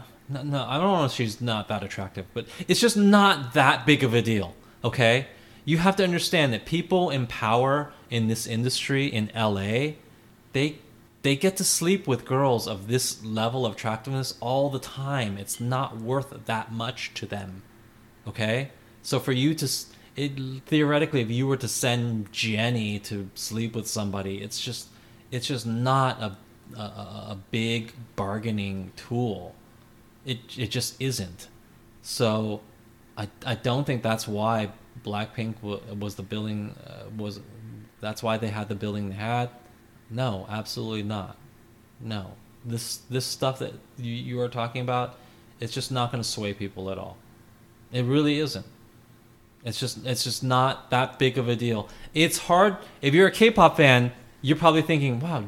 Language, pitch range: English, 110-130 Hz